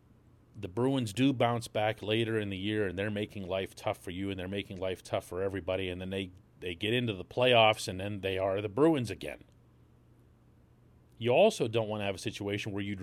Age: 40-59